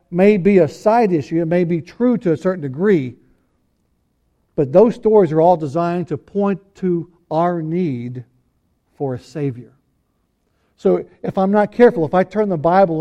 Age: 60-79